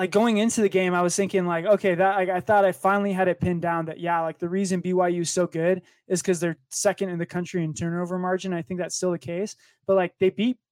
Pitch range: 170-190 Hz